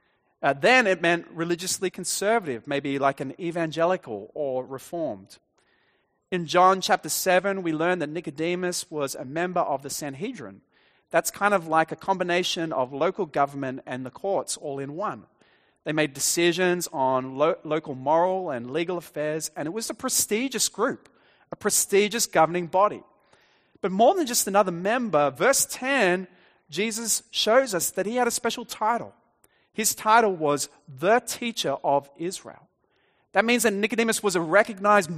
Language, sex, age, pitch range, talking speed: English, male, 30-49, 145-200 Hz, 155 wpm